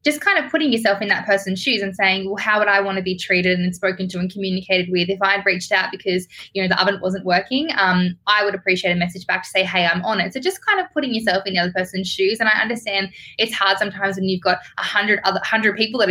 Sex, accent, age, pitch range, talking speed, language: female, Australian, 10-29, 185-220 Hz, 275 wpm, English